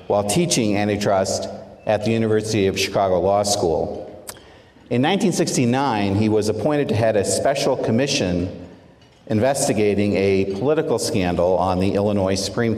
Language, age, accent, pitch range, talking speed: English, 50-69, American, 100-125 Hz, 130 wpm